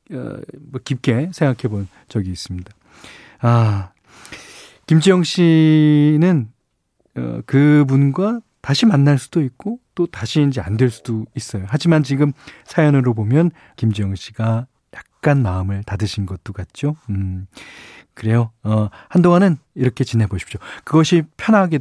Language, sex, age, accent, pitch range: Korean, male, 40-59, native, 110-155 Hz